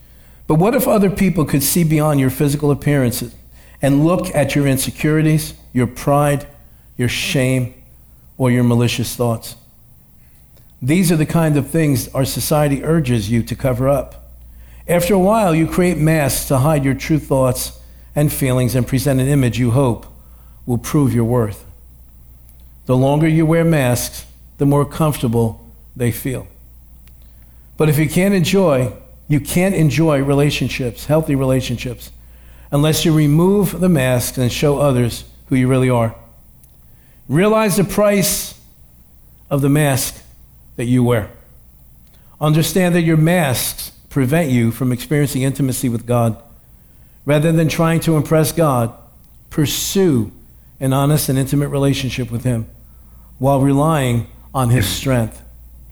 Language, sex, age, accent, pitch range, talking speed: English, male, 50-69, American, 115-155 Hz, 140 wpm